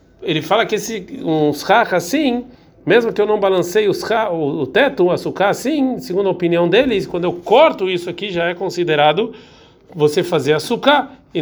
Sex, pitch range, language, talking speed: male, 160-225 Hz, Portuguese, 180 wpm